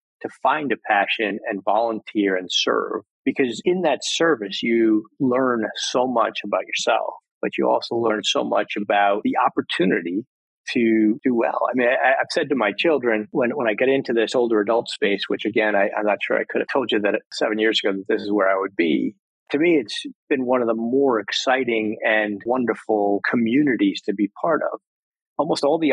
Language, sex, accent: English, male, American